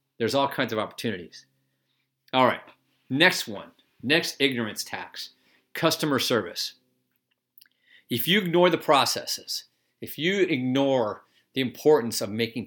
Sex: male